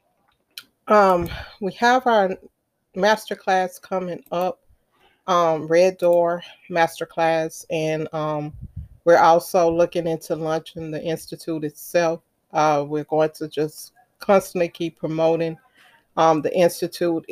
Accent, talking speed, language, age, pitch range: American, 110 wpm, English, 40-59, 155-180 Hz